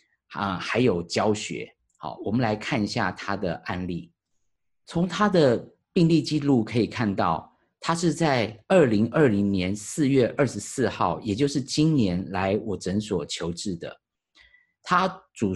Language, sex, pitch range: Chinese, male, 100-140 Hz